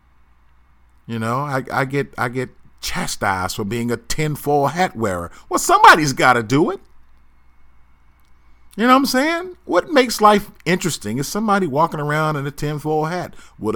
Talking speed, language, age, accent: 165 wpm, English, 40-59, American